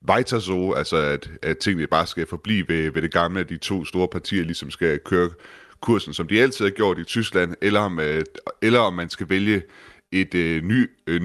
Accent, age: native, 30-49